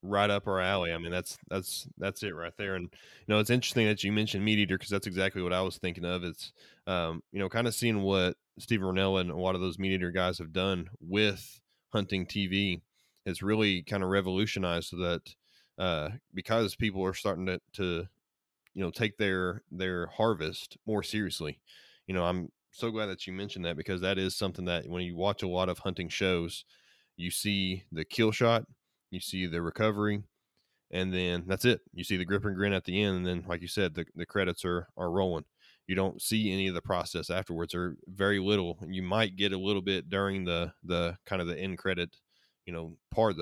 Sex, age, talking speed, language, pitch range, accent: male, 20-39, 220 wpm, English, 90-100 Hz, American